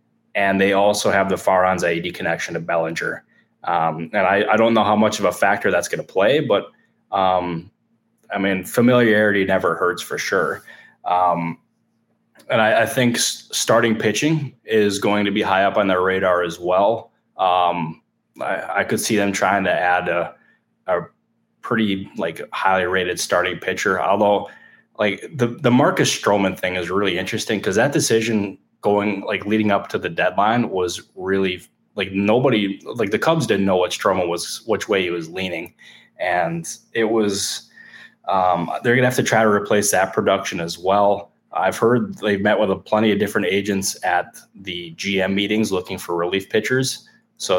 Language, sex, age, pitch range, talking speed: English, male, 20-39, 95-110 Hz, 180 wpm